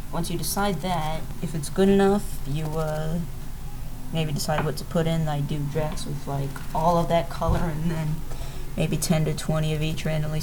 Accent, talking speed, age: American, 195 wpm, 20-39